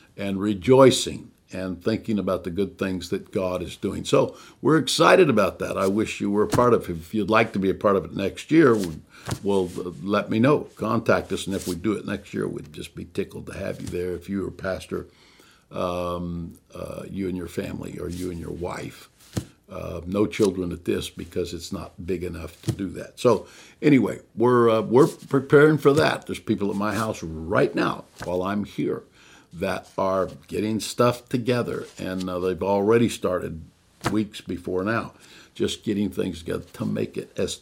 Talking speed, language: 200 wpm, English